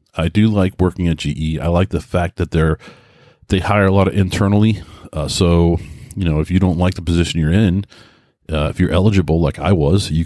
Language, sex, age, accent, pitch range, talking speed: English, male, 40-59, American, 80-100 Hz, 220 wpm